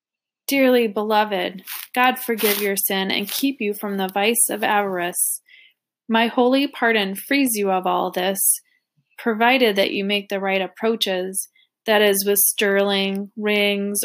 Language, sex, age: English, female, 20-39